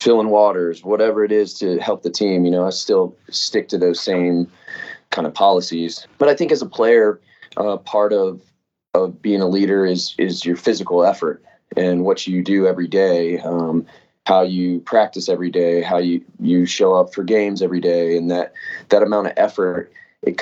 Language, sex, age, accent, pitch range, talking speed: English, male, 20-39, American, 85-110 Hz, 195 wpm